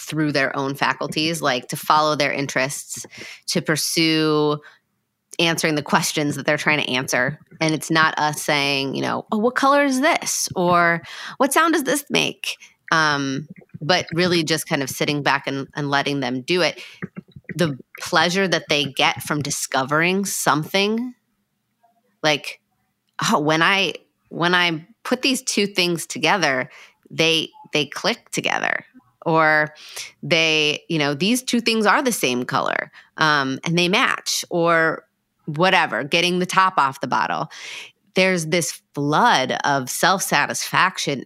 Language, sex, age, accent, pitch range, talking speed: English, female, 30-49, American, 145-180 Hz, 150 wpm